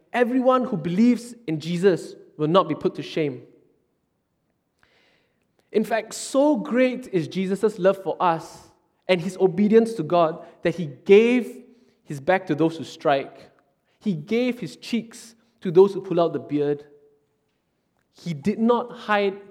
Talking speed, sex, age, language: 150 wpm, male, 20-39, English